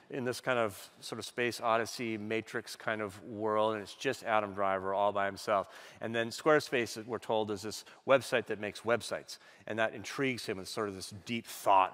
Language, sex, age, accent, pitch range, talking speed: English, male, 30-49, American, 100-125 Hz, 205 wpm